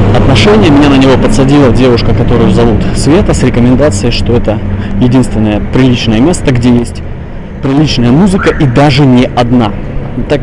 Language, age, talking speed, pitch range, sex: Russian, 20-39, 140 wpm, 100-135 Hz, male